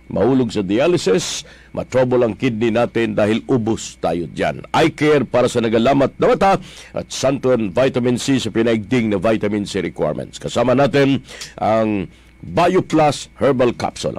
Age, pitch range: 50-69, 110-140 Hz